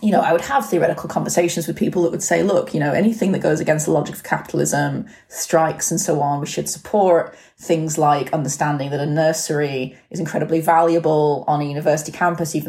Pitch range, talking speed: 150-210 Hz, 210 wpm